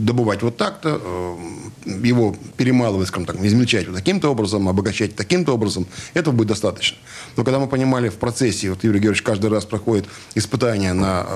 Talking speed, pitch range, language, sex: 165 wpm, 105-125 Hz, Russian, male